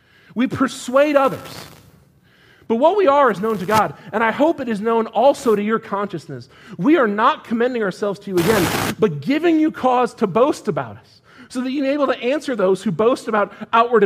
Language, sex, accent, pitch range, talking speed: English, male, American, 185-265 Hz, 210 wpm